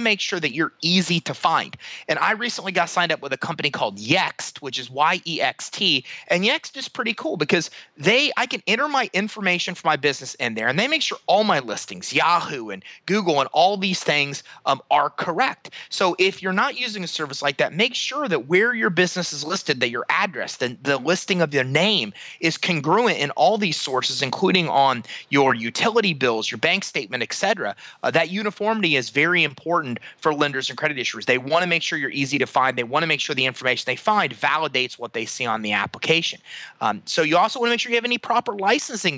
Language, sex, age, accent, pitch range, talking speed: English, male, 30-49, American, 140-195 Hz, 220 wpm